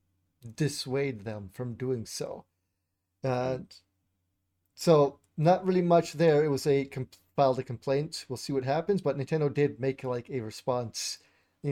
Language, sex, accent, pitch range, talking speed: English, male, American, 130-155 Hz, 150 wpm